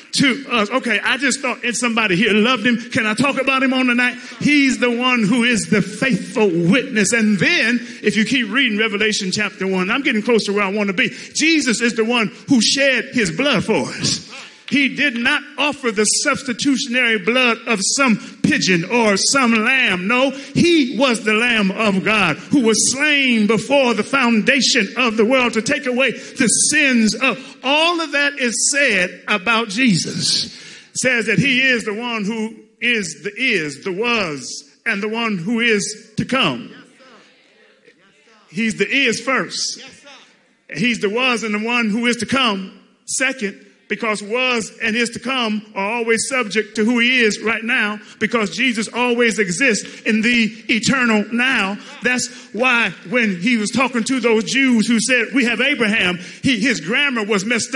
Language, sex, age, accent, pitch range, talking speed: English, male, 40-59, American, 215-255 Hz, 180 wpm